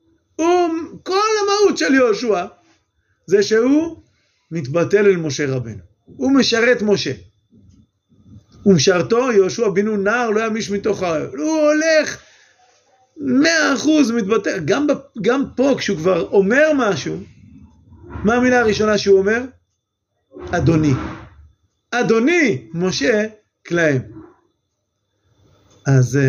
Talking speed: 105 wpm